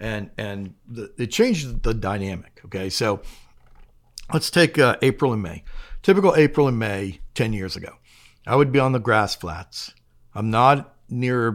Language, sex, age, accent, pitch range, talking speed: English, male, 50-69, American, 95-120 Hz, 165 wpm